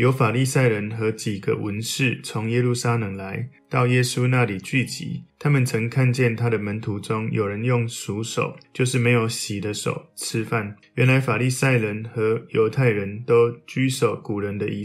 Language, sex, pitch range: Chinese, male, 110-135 Hz